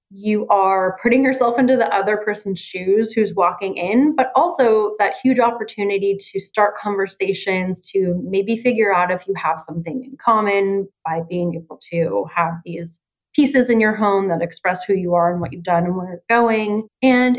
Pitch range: 185-235 Hz